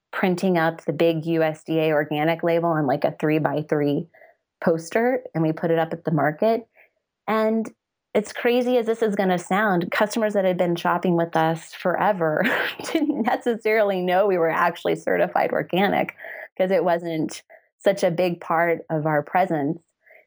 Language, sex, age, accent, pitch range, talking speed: English, female, 20-39, American, 165-215 Hz, 170 wpm